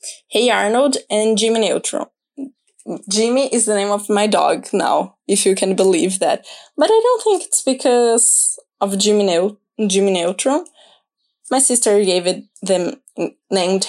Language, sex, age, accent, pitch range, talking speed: English, female, 10-29, Brazilian, 200-260 Hz, 145 wpm